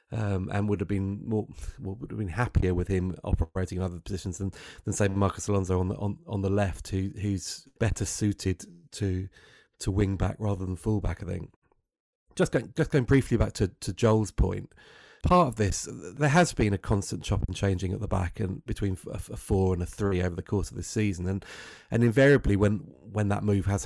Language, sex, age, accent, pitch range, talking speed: English, male, 30-49, British, 95-115 Hz, 220 wpm